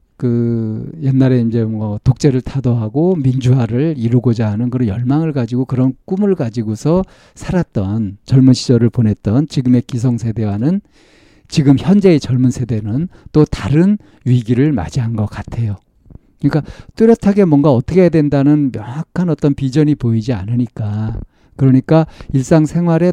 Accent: native